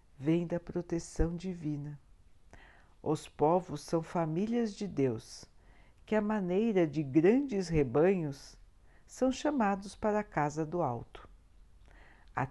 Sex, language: female, Portuguese